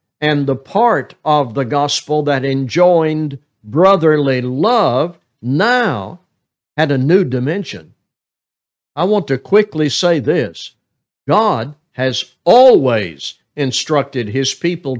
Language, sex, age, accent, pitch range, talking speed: English, male, 60-79, American, 130-170 Hz, 110 wpm